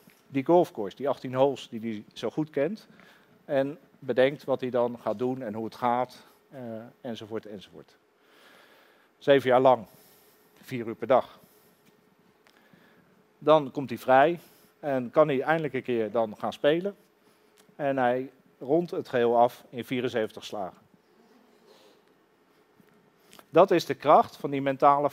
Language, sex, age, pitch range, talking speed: Dutch, male, 40-59, 120-160 Hz, 145 wpm